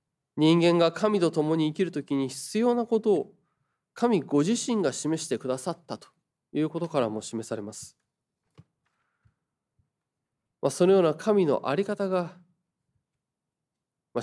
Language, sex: Japanese, male